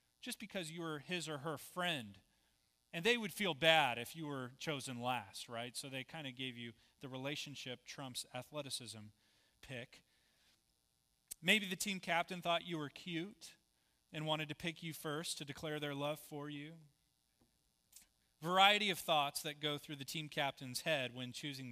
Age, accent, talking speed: 30-49, American, 170 wpm